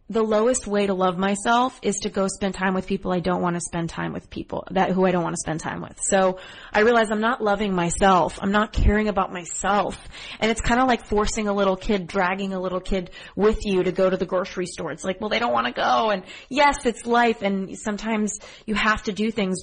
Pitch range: 185-220 Hz